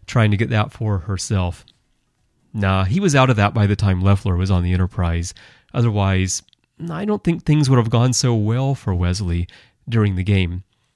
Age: 30-49